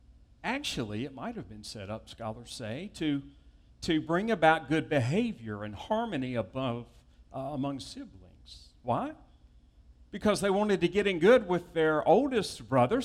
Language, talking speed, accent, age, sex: English, 150 wpm, American, 50-69, male